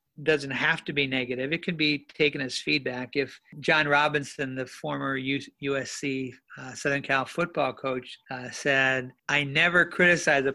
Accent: American